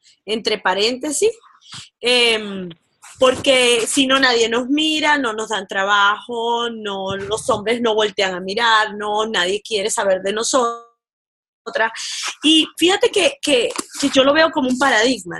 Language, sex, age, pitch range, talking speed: Spanish, female, 20-39, 205-270 Hz, 145 wpm